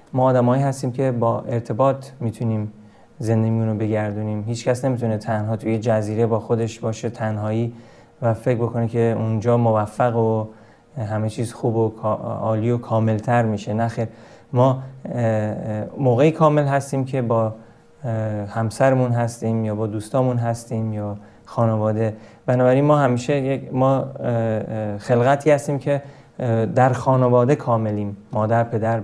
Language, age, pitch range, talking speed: Persian, 30-49, 110-135 Hz, 125 wpm